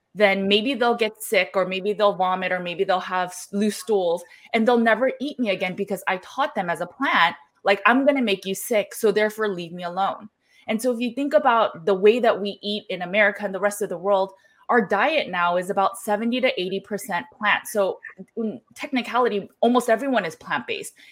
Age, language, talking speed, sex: 20-39, English, 205 wpm, female